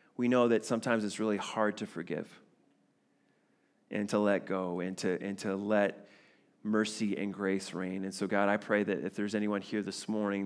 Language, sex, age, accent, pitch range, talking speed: English, male, 30-49, American, 100-110 Hz, 190 wpm